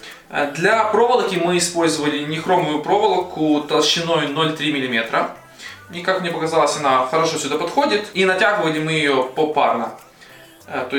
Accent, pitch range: native, 135-180 Hz